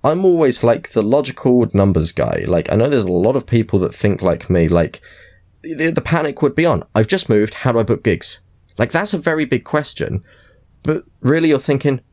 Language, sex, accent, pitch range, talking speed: English, male, British, 90-115 Hz, 220 wpm